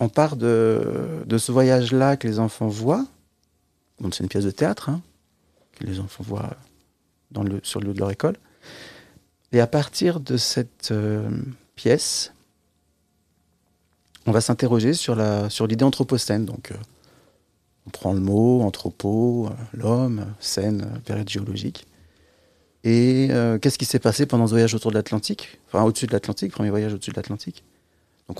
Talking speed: 165 wpm